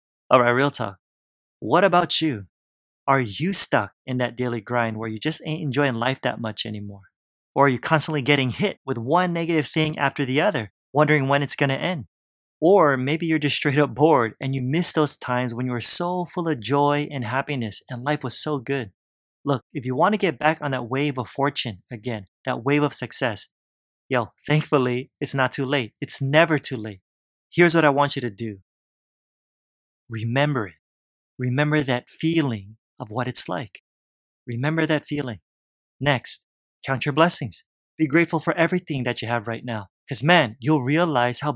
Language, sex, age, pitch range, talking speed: English, male, 20-39, 115-150 Hz, 190 wpm